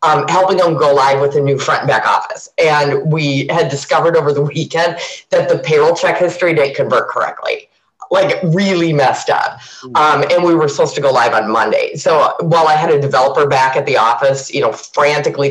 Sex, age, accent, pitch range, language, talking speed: female, 30-49, American, 140-215 Hz, English, 215 wpm